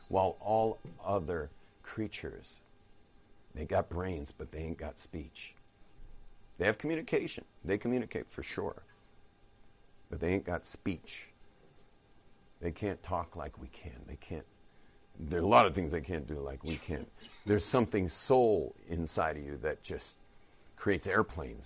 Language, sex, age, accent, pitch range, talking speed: English, male, 50-69, American, 80-105 Hz, 150 wpm